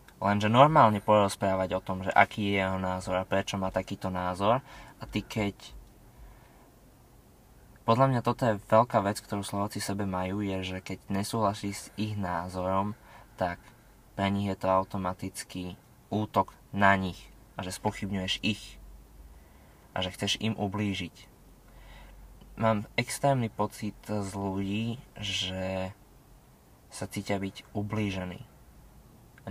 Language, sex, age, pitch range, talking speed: Slovak, male, 20-39, 95-110 Hz, 130 wpm